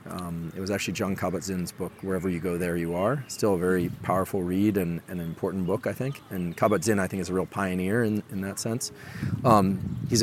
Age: 40-59